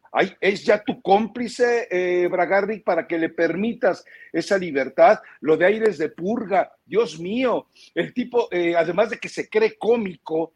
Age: 50-69